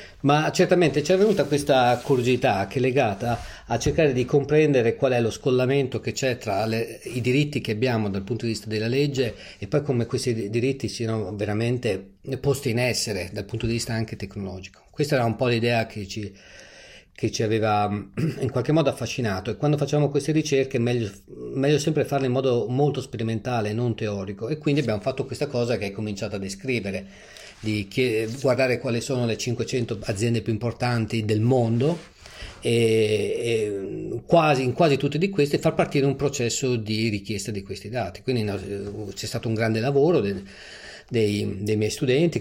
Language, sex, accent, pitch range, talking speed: Italian, male, native, 110-135 Hz, 180 wpm